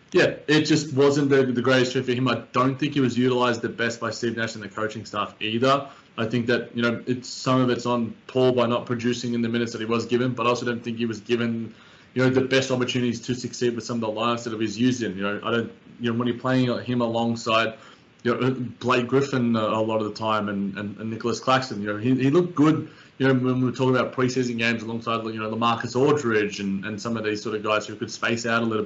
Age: 20-39